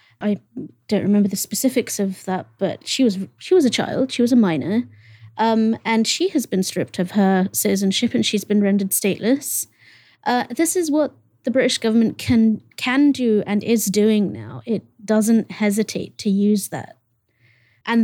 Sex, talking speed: female, 175 wpm